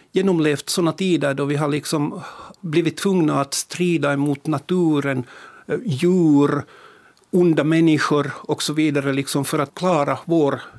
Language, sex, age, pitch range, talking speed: Finnish, male, 60-79, 150-180 Hz, 120 wpm